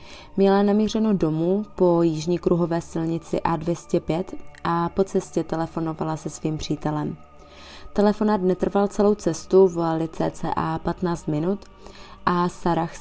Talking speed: 115 wpm